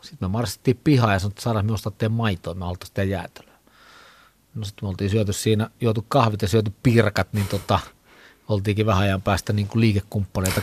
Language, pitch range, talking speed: Finnish, 90-110 Hz, 190 wpm